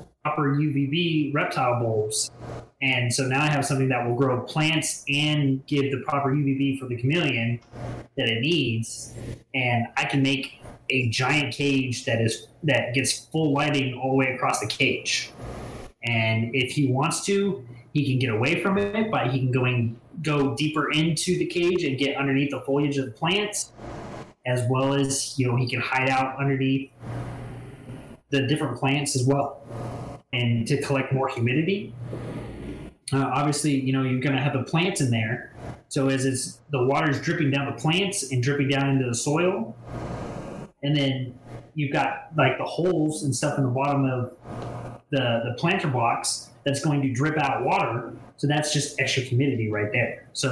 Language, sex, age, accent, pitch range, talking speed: English, male, 20-39, American, 120-145 Hz, 180 wpm